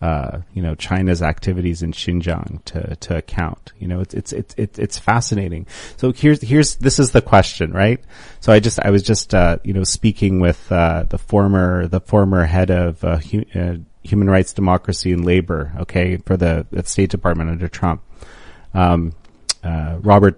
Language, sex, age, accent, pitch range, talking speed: English, male, 30-49, American, 85-105 Hz, 175 wpm